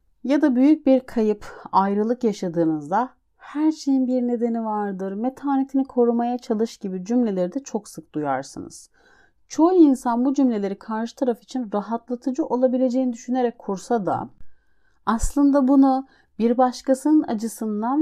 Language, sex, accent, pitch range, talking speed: Turkish, female, native, 210-265 Hz, 125 wpm